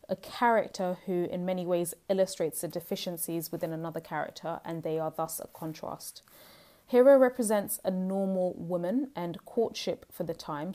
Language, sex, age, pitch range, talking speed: English, female, 20-39, 170-195 Hz, 155 wpm